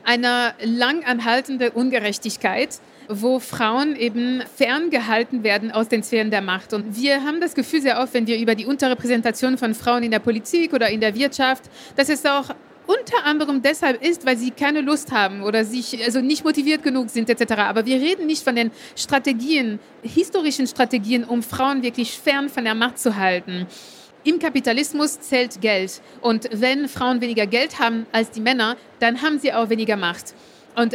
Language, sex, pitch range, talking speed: German, female, 235-285 Hz, 180 wpm